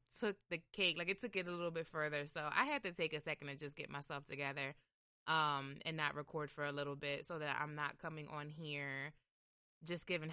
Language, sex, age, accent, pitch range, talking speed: English, female, 20-39, American, 150-195 Hz, 230 wpm